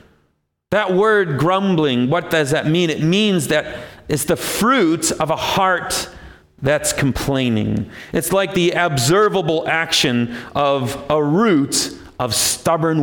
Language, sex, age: English, male, 40-59